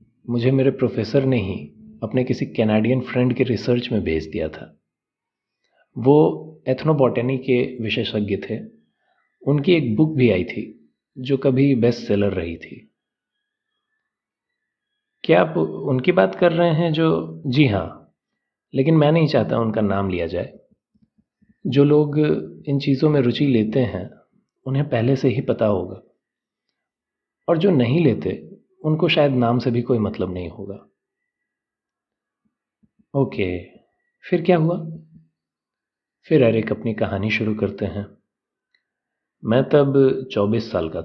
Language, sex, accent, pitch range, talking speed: Hindi, male, native, 110-150 Hz, 135 wpm